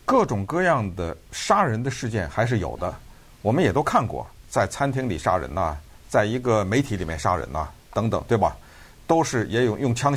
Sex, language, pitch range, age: male, Chinese, 90-140 Hz, 50-69